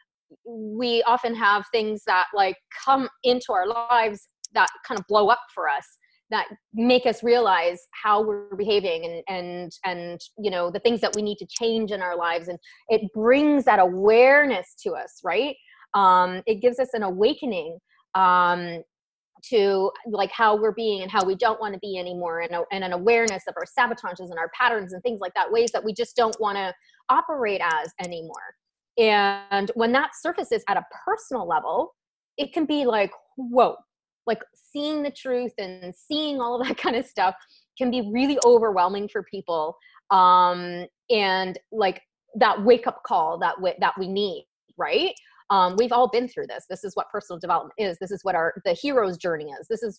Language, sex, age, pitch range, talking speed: English, female, 20-39, 185-245 Hz, 190 wpm